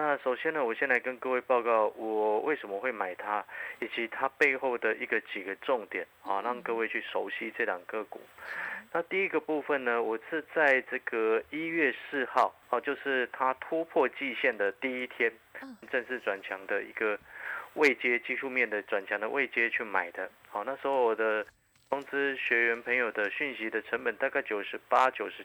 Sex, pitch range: male, 115-145 Hz